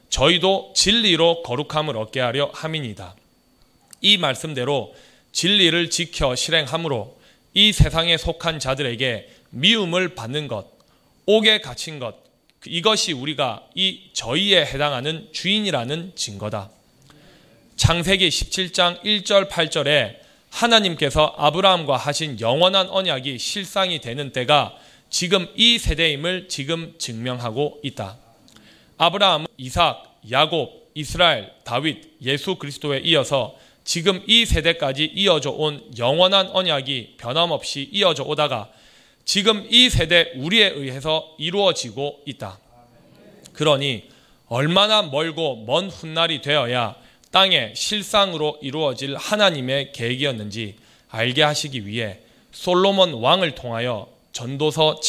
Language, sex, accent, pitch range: Korean, male, native, 130-180 Hz